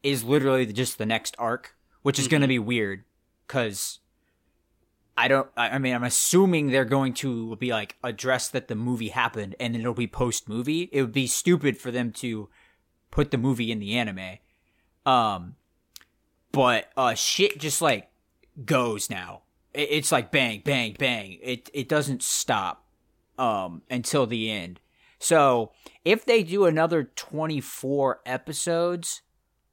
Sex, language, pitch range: male, English, 110-145 Hz